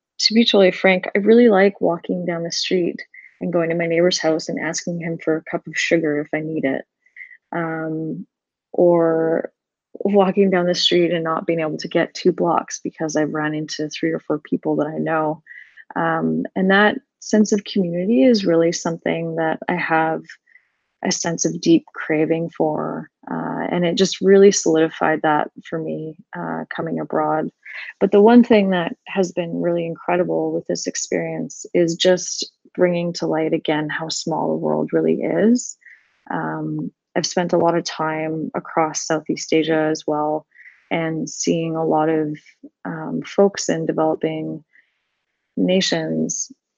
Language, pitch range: English, 155-185 Hz